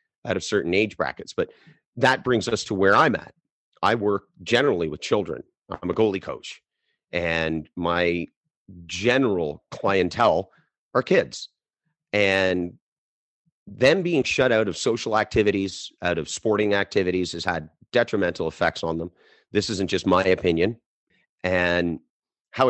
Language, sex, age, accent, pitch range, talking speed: English, male, 40-59, American, 85-110 Hz, 140 wpm